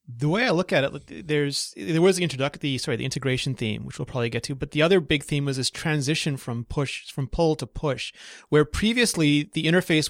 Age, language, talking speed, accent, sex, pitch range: 30-49, English, 230 wpm, American, male, 125-150 Hz